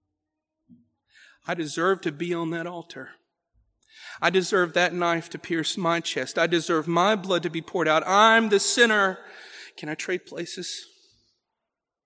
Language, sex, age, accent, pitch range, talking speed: English, male, 40-59, American, 165-205 Hz, 150 wpm